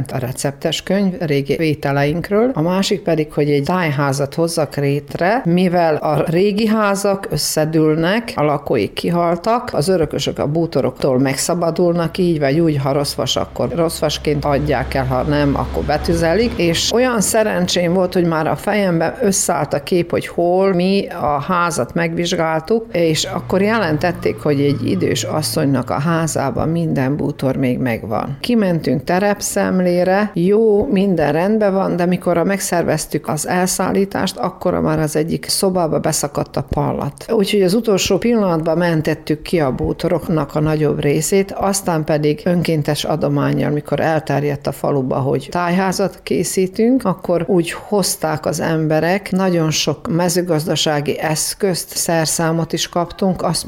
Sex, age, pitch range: female, 50-69, 150-185 Hz